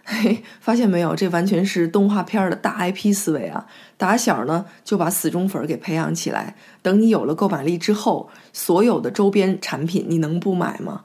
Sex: female